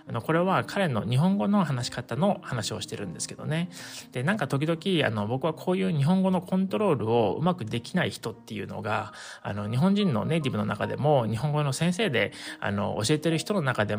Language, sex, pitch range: Japanese, male, 115-175 Hz